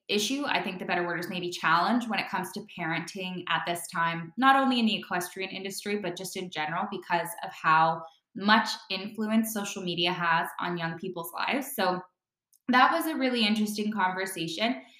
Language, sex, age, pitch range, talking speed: English, female, 10-29, 175-215 Hz, 185 wpm